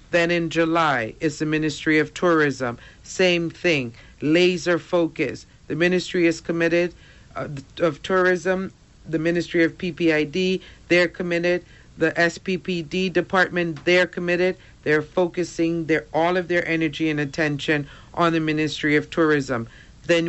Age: 50-69